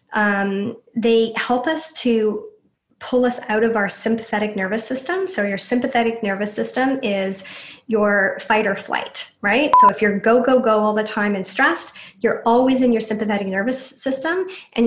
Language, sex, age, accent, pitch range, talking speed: English, female, 10-29, American, 205-235 Hz, 175 wpm